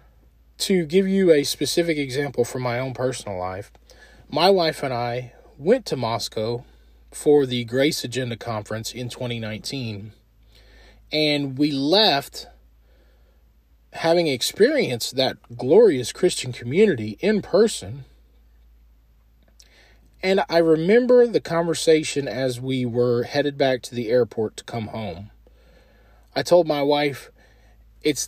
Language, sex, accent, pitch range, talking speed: English, male, American, 110-150 Hz, 120 wpm